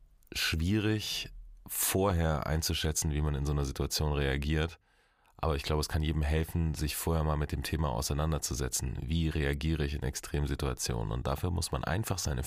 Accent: German